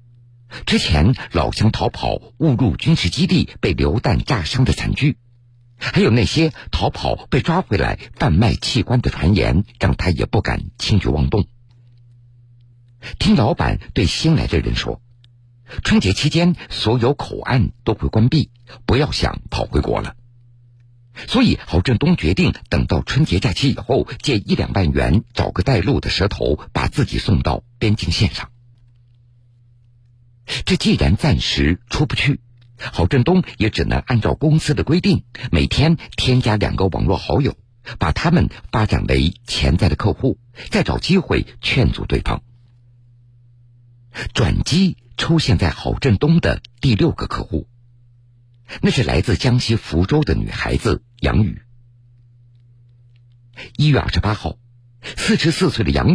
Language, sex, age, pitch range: Polish, male, 50-69, 110-125 Hz